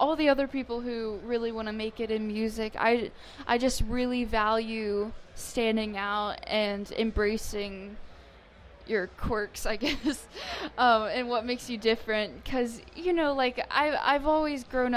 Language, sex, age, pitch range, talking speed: English, female, 10-29, 215-245 Hz, 155 wpm